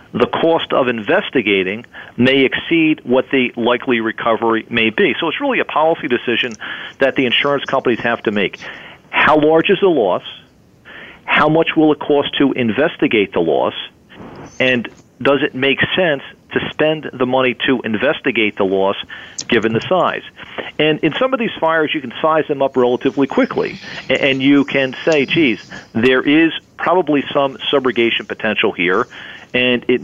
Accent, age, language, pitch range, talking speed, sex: American, 40-59, English, 115-150 Hz, 165 wpm, male